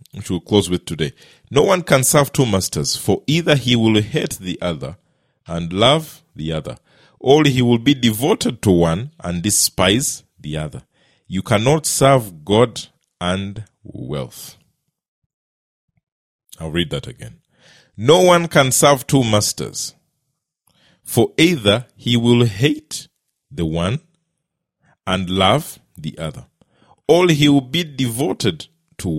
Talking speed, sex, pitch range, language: 135 wpm, male, 95-150 Hz, English